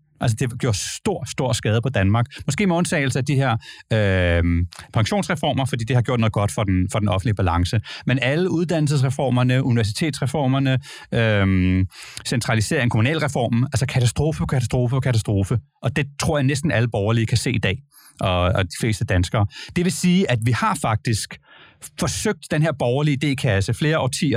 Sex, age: male, 30-49